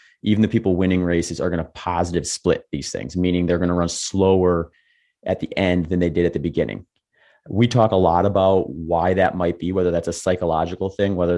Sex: male